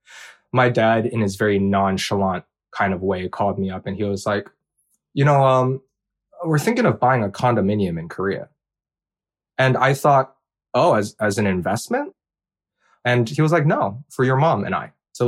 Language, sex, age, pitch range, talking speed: English, male, 20-39, 100-140 Hz, 180 wpm